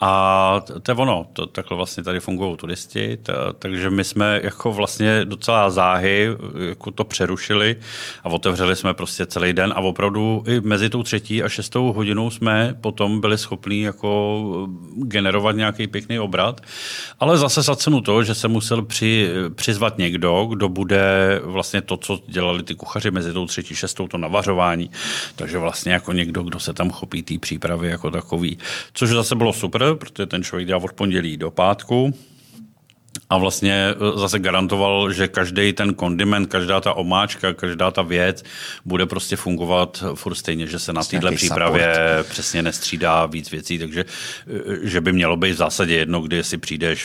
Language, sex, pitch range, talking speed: Czech, male, 90-105 Hz, 165 wpm